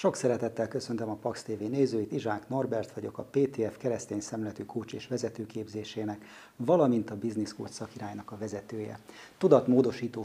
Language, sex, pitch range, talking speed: Hungarian, male, 105-135 Hz, 135 wpm